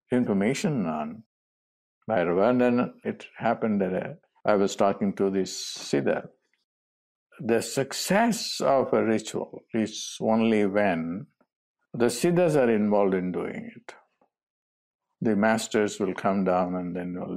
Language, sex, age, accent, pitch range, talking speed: English, male, 50-69, Indian, 90-110 Hz, 125 wpm